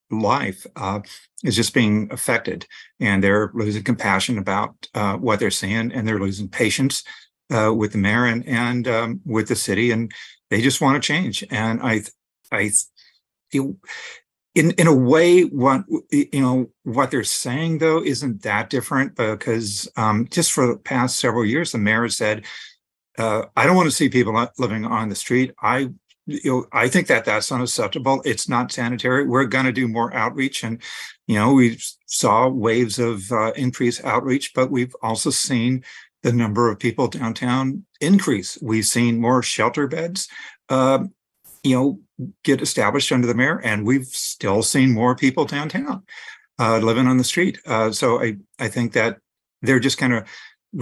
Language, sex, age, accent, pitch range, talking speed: English, male, 50-69, American, 110-135 Hz, 170 wpm